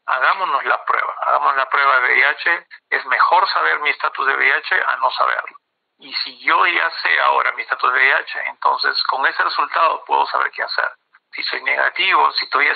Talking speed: 195 wpm